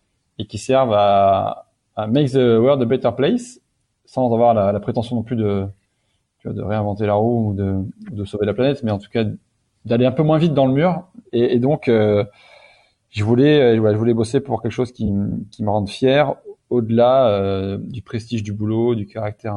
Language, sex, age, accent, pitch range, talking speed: French, male, 20-39, French, 105-125 Hz, 220 wpm